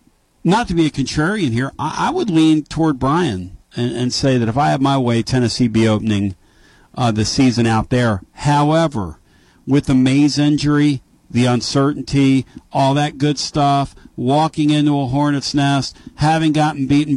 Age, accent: 50-69, American